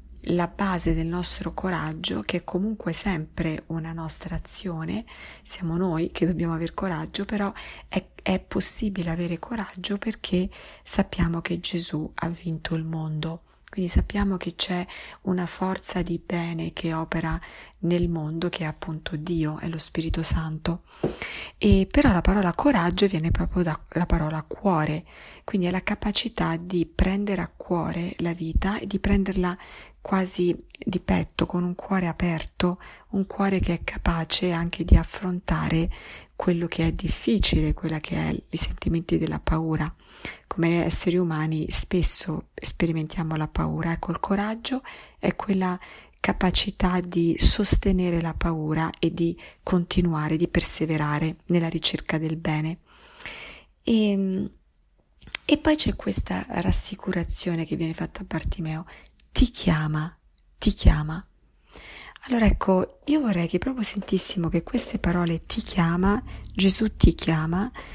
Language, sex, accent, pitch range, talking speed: Italian, female, native, 165-195 Hz, 140 wpm